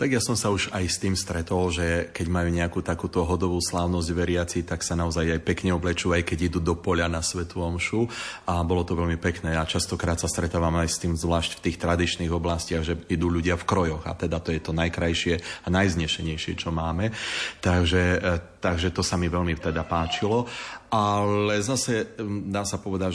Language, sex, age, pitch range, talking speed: Slovak, male, 30-49, 80-90 Hz, 195 wpm